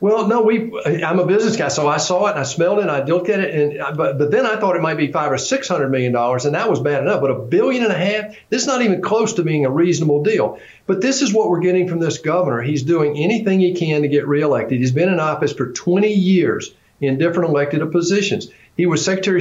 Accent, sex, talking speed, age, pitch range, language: American, male, 265 wpm, 50-69, 140-180 Hz, English